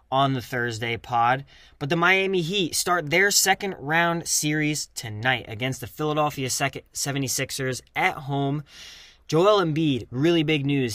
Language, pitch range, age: English, 125-150 Hz, 20-39